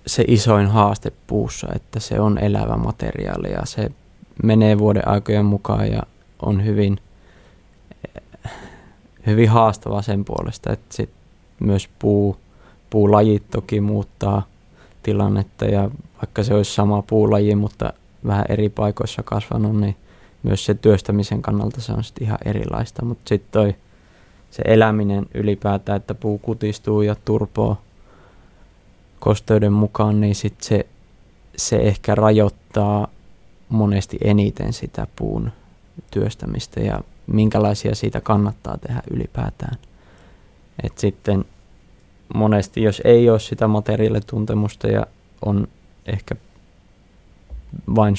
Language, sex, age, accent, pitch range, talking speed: Finnish, male, 20-39, native, 100-110 Hz, 115 wpm